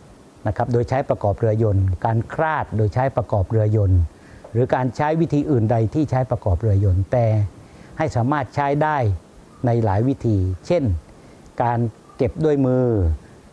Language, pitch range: Thai, 105-135 Hz